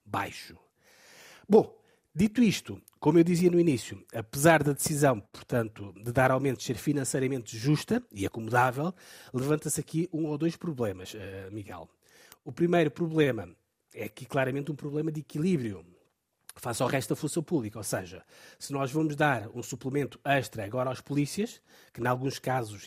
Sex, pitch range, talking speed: male, 120-160 Hz, 165 wpm